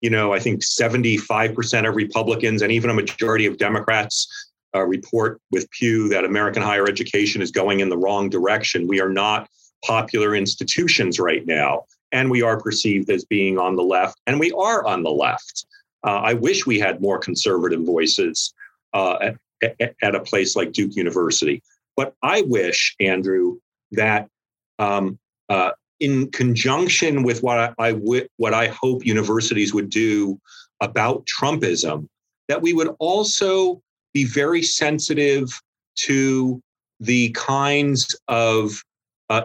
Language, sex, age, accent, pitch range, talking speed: English, male, 40-59, American, 105-130 Hz, 145 wpm